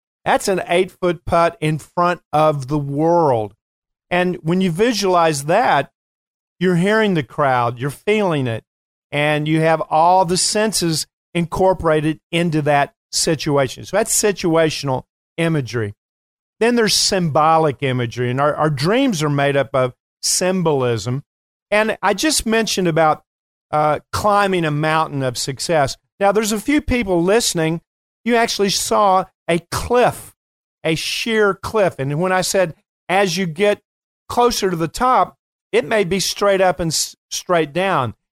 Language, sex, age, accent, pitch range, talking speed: English, male, 50-69, American, 155-200 Hz, 145 wpm